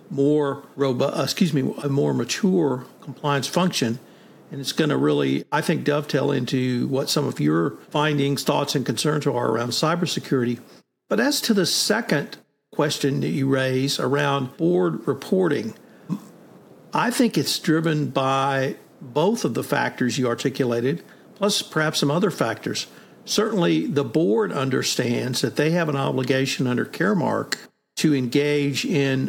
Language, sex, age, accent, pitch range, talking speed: English, male, 60-79, American, 135-165 Hz, 145 wpm